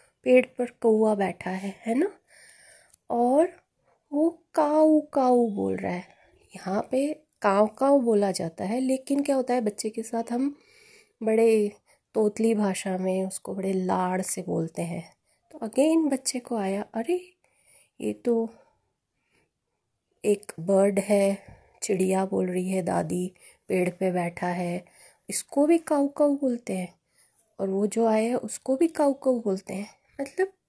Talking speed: 150 wpm